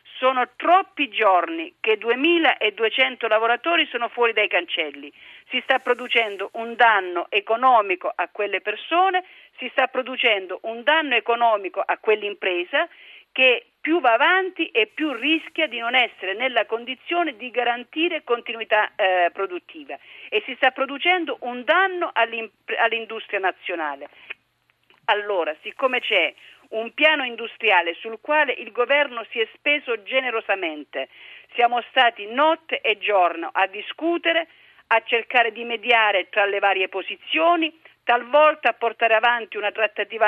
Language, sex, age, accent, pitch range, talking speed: Italian, female, 50-69, native, 205-265 Hz, 130 wpm